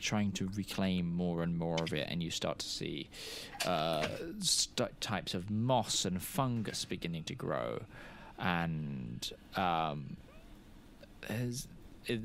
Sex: male